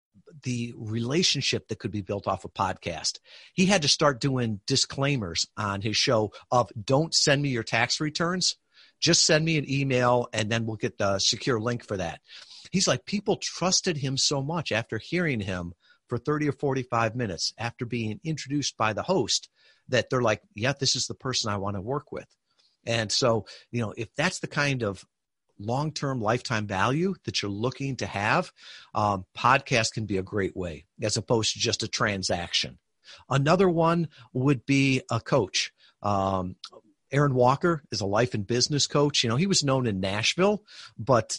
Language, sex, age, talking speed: English, male, 50-69, 185 wpm